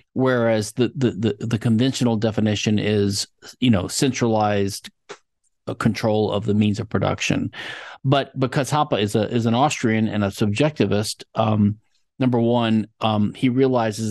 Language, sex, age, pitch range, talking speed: English, male, 40-59, 105-125 Hz, 145 wpm